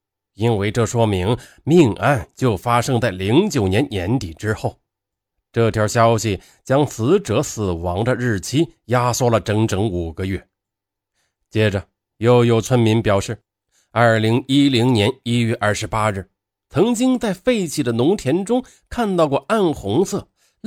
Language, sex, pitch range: Chinese, male, 100-140 Hz